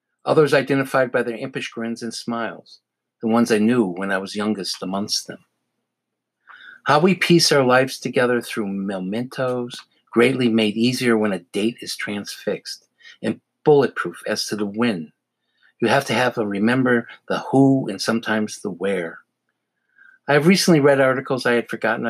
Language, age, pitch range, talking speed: English, 50-69, 110-130 Hz, 165 wpm